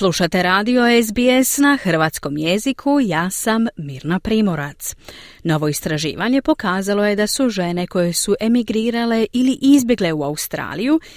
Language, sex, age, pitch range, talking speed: Croatian, female, 30-49, 165-240 Hz, 130 wpm